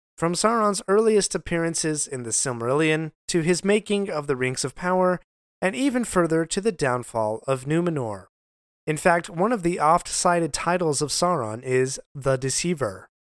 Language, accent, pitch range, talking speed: English, American, 135-190 Hz, 155 wpm